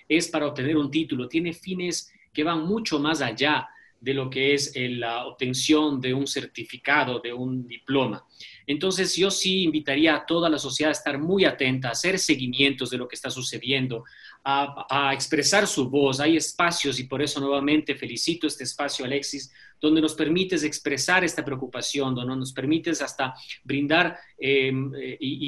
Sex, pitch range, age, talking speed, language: male, 130-160 Hz, 40-59, 165 wpm, Spanish